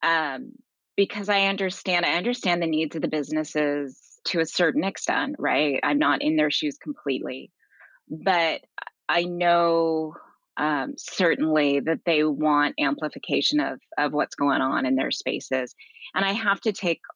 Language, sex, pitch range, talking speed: English, female, 145-175 Hz, 155 wpm